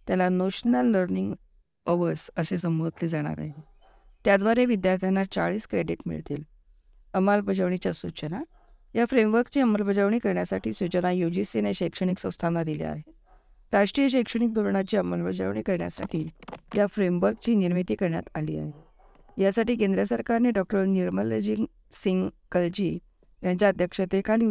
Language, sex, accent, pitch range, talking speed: Marathi, female, native, 160-210 Hz, 110 wpm